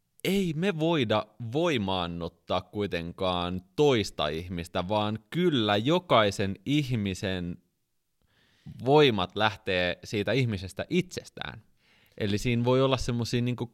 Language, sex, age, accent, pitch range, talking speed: Finnish, male, 20-39, native, 90-120 Hz, 90 wpm